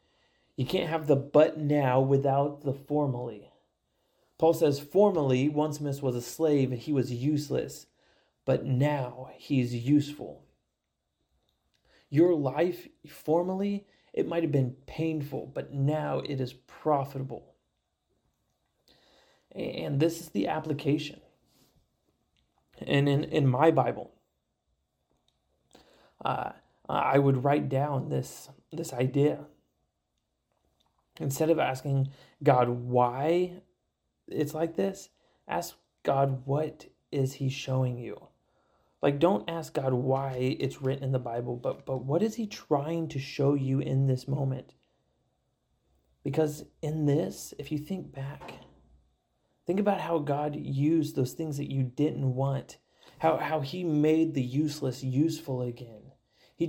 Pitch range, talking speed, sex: 130-155 Hz, 125 wpm, male